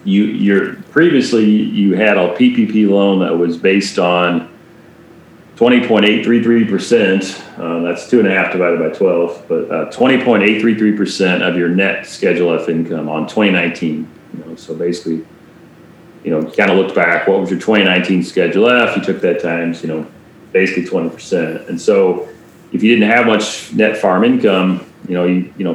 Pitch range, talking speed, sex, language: 85-105 Hz, 180 wpm, male, English